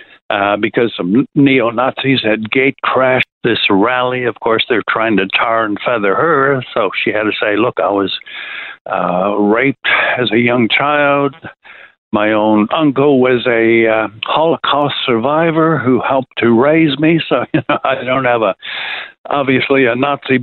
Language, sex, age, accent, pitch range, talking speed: English, male, 60-79, American, 115-140 Hz, 160 wpm